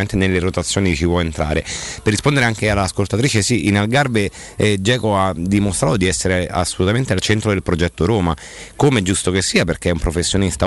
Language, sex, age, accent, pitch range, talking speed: Italian, male, 30-49, native, 90-105 Hz, 175 wpm